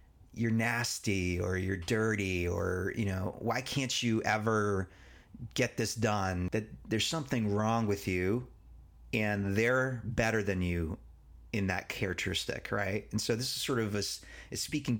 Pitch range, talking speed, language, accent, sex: 100-120 Hz, 150 wpm, English, American, male